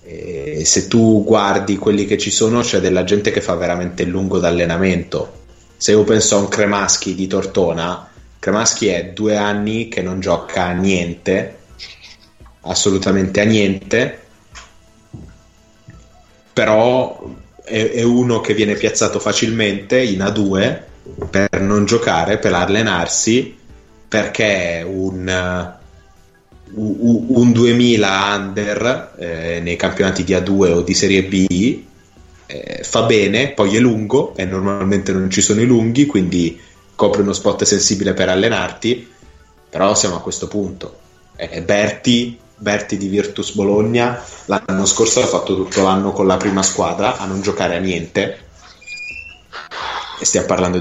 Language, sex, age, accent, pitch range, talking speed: Italian, male, 30-49, native, 95-105 Hz, 135 wpm